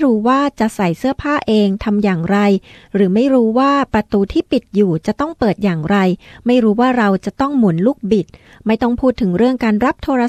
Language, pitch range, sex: Thai, 195-250 Hz, female